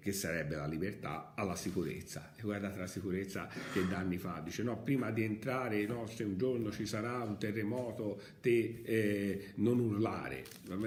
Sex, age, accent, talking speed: male, 50-69, native, 175 wpm